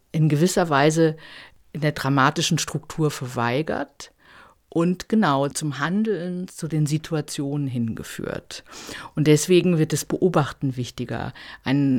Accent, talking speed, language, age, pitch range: German, 115 wpm, German, 50-69, 150-195 Hz